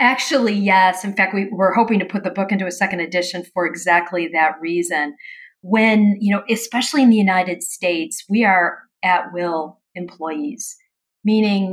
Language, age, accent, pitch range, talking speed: English, 40-59, American, 175-210 Hz, 170 wpm